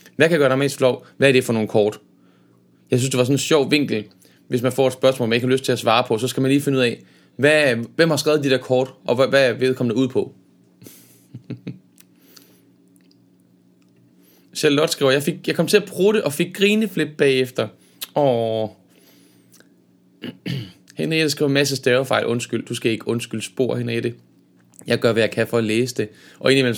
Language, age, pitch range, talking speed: Danish, 20-39, 115-140 Hz, 215 wpm